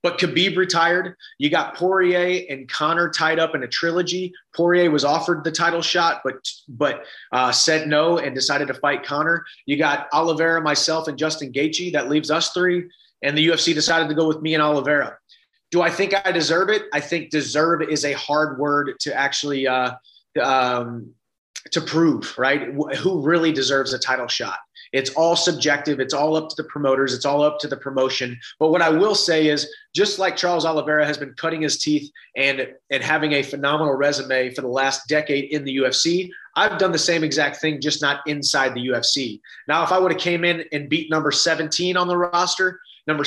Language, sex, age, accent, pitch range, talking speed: German, male, 30-49, American, 145-175 Hz, 200 wpm